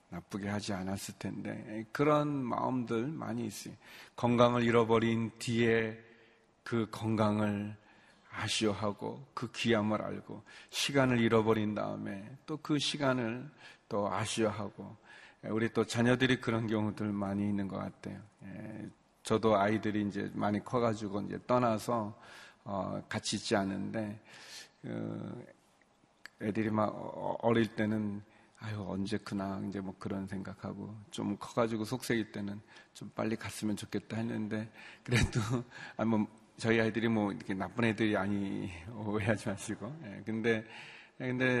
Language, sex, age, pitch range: Korean, male, 40-59, 105-115 Hz